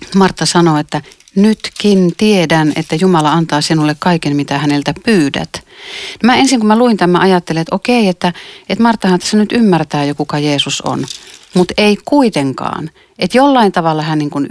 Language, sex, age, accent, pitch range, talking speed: Finnish, female, 40-59, native, 150-205 Hz, 170 wpm